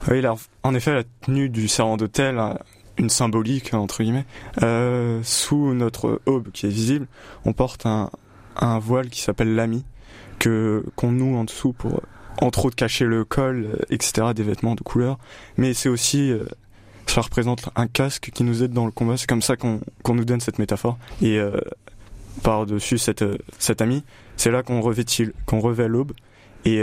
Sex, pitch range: male, 110-125 Hz